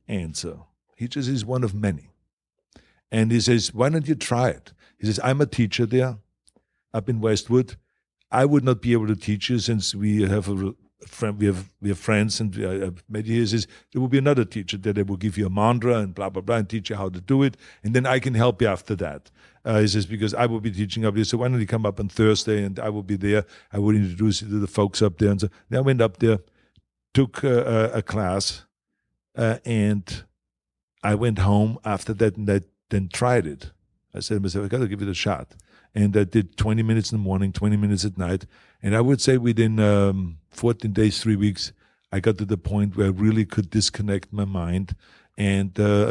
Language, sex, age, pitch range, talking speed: English, male, 50-69, 100-115 Hz, 235 wpm